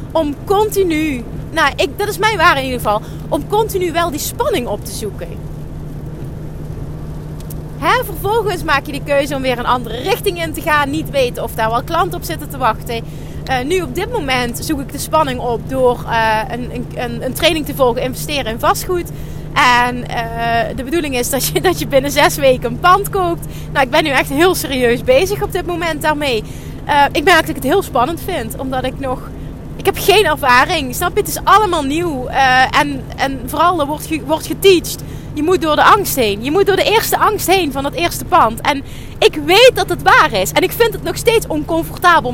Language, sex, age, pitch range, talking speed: Dutch, female, 30-49, 280-385 Hz, 215 wpm